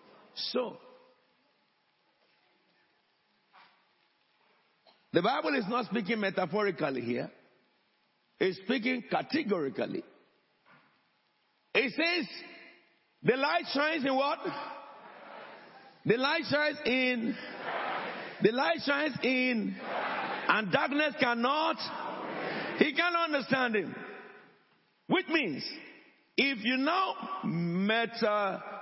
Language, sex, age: English, male, 60-79